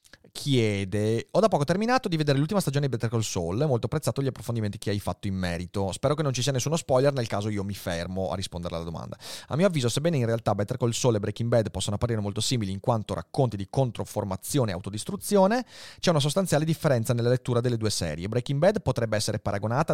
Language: Italian